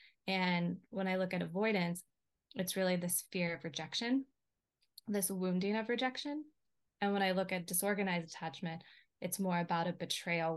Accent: American